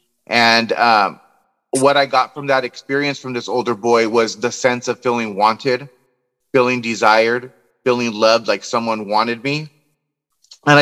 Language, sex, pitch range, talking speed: English, male, 120-145 Hz, 150 wpm